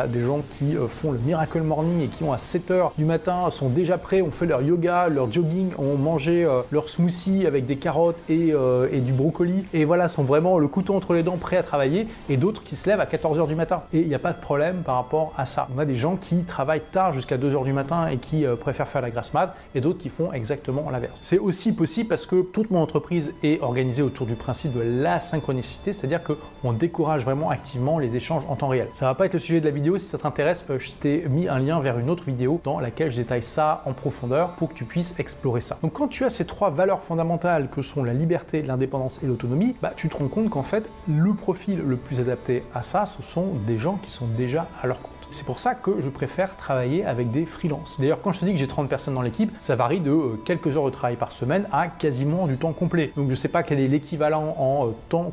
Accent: French